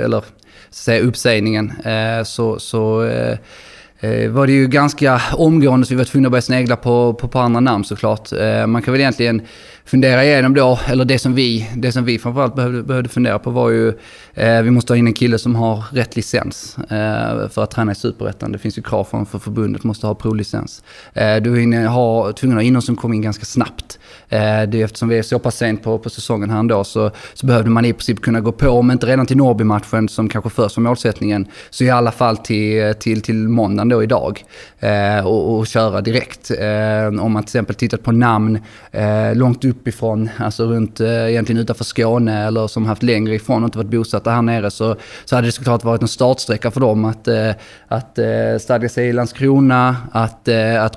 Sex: male